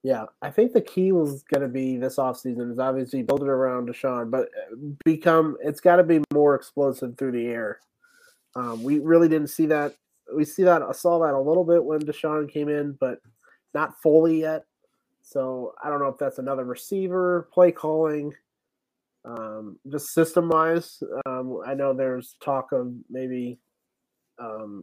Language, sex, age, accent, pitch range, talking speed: English, male, 30-49, American, 130-160 Hz, 175 wpm